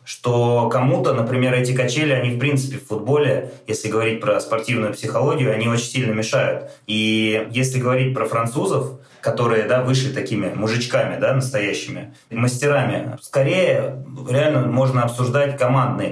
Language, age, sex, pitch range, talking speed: Russian, 20-39, male, 115-135 Hz, 140 wpm